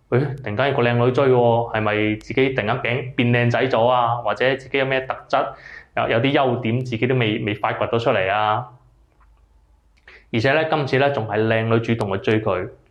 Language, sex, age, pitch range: Chinese, male, 20-39, 110-135 Hz